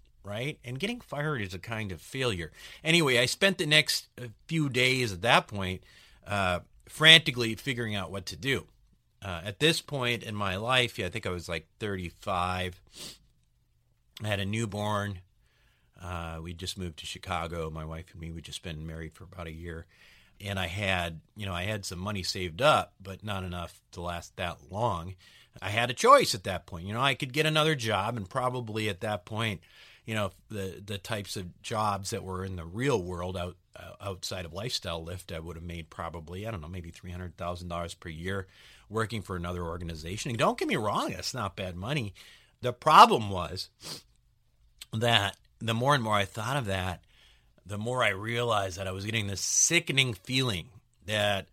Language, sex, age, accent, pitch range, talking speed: English, male, 40-59, American, 90-115 Hz, 195 wpm